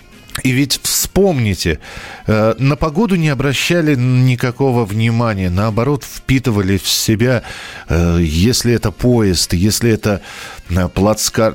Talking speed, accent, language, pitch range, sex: 100 wpm, native, Russian, 105-145 Hz, male